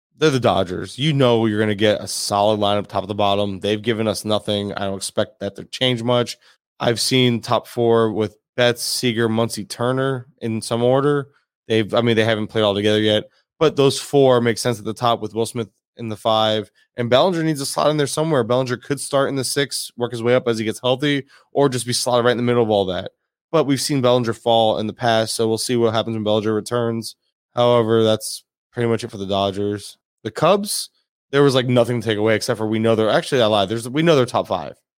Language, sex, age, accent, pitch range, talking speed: English, male, 20-39, American, 110-125 Hz, 240 wpm